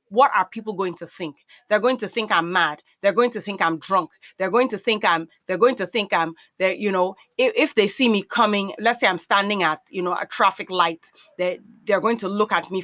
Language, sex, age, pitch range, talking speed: English, female, 30-49, 180-235 Hz, 250 wpm